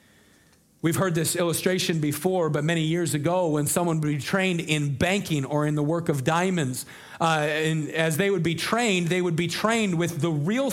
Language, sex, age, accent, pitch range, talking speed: English, male, 40-59, American, 170-215 Hz, 200 wpm